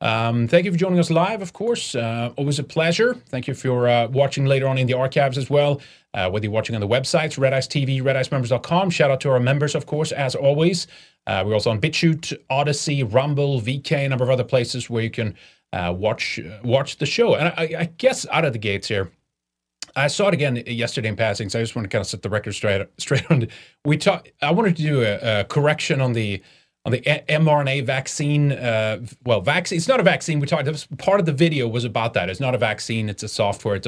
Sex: male